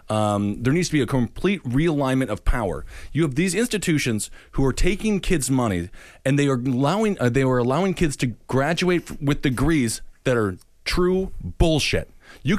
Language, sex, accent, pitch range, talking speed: English, male, American, 130-175 Hz, 175 wpm